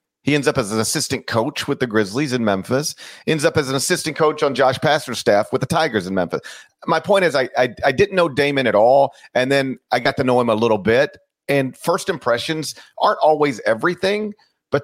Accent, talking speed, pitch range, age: American, 220 wpm, 120-165 Hz, 40-59